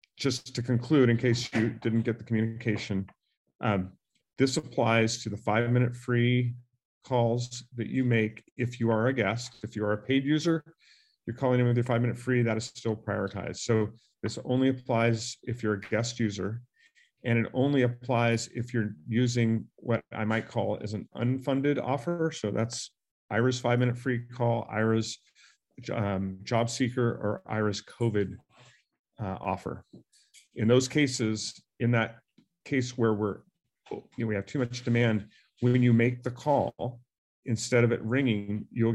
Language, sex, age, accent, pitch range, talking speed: English, male, 40-59, American, 110-125 Hz, 165 wpm